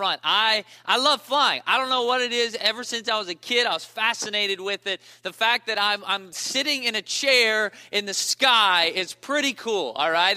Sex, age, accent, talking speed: male, 20-39, American, 220 wpm